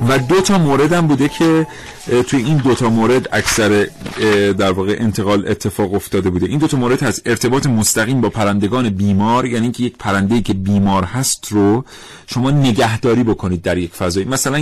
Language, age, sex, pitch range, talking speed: Persian, 40-59, male, 105-140 Hz, 180 wpm